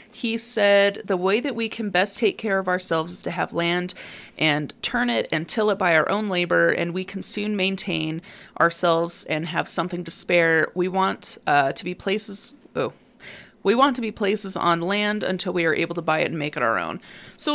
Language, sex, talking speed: English, female, 220 wpm